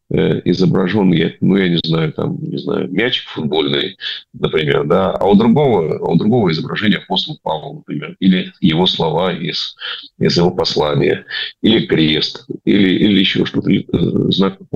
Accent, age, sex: native, 40-59, male